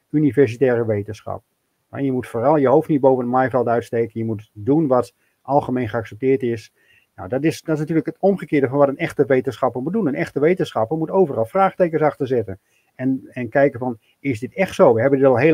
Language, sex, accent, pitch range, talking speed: Dutch, male, Dutch, 120-150 Hz, 210 wpm